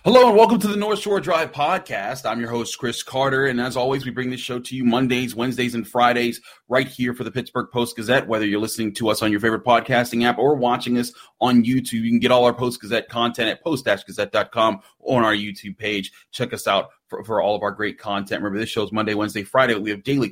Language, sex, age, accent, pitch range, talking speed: English, male, 30-49, American, 115-145 Hz, 240 wpm